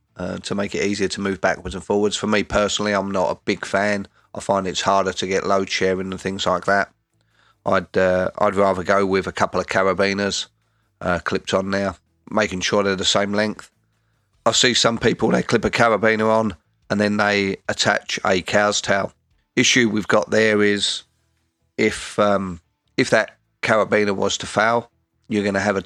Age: 30-49